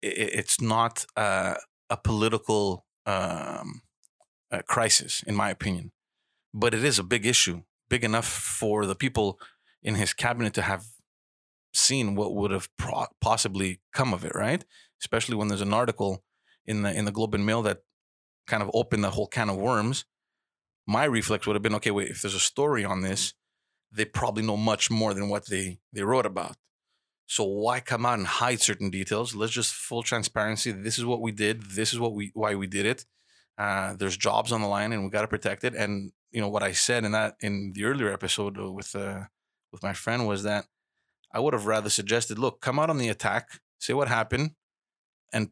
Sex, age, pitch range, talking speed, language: male, 30-49, 100-120 Hz, 195 wpm, English